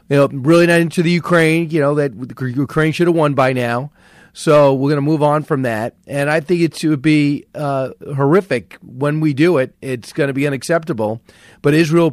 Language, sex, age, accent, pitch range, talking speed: English, male, 40-59, American, 140-180 Hz, 215 wpm